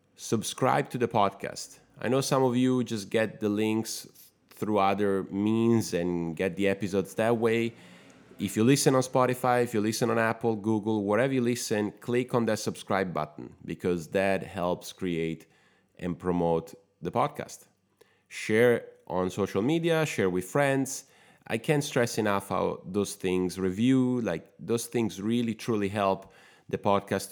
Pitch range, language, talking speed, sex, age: 95-120 Hz, English, 160 wpm, male, 30-49